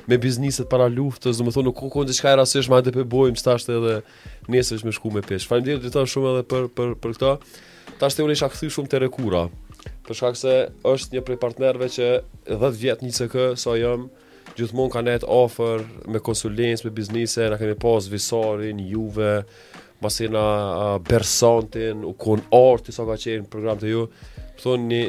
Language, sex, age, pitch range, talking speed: English, male, 20-39, 105-125 Hz, 195 wpm